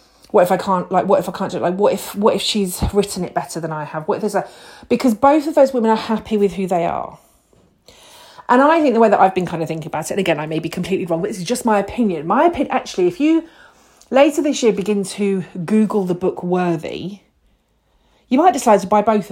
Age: 40-59